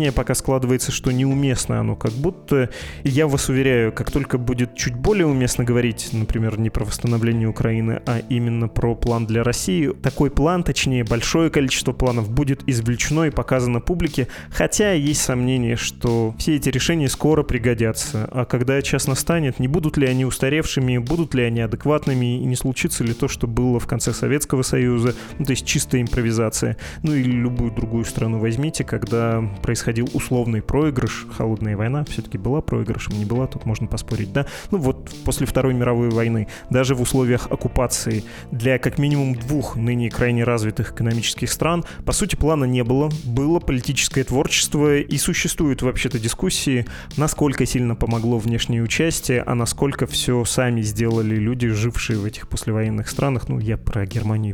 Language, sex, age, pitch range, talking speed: Russian, male, 20-39, 115-140 Hz, 165 wpm